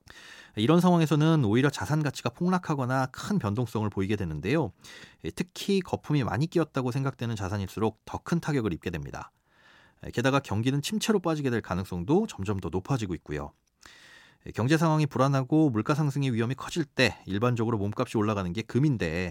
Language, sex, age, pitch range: Korean, male, 30-49, 110-155 Hz